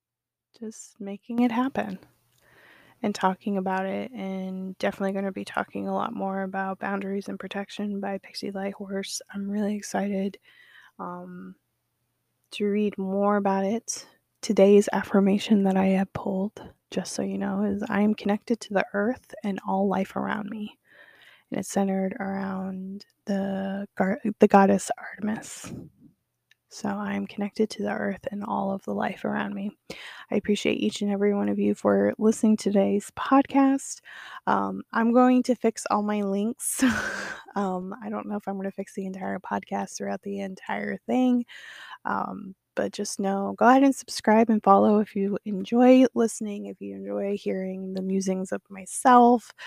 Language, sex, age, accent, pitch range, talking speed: English, female, 20-39, American, 190-215 Hz, 165 wpm